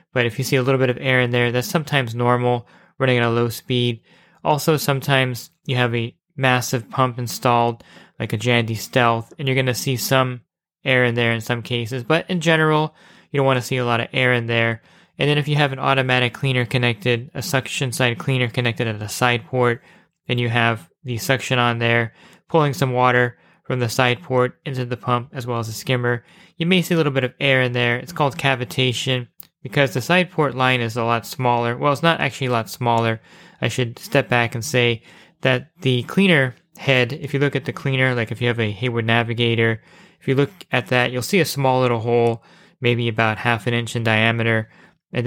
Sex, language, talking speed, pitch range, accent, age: male, English, 225 wpm, 120-135 Hz, American, 20-39